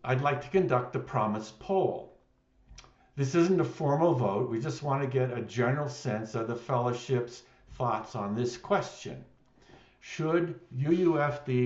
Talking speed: 150 wpm